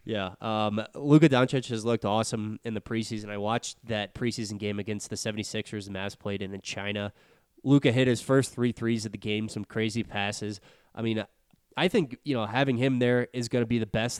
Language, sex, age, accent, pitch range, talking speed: English, male, 20-39, American, 105-120 Hz, 210 wpm